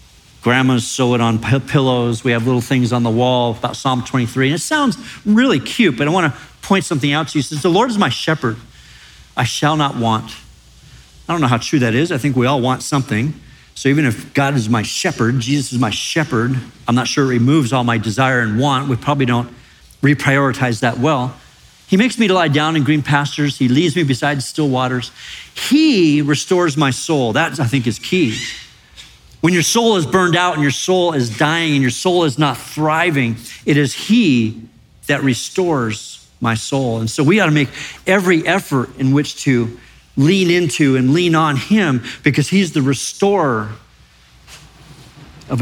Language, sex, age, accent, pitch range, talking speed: English, male, 50-69, American, 120-155 Hz, 195 wpm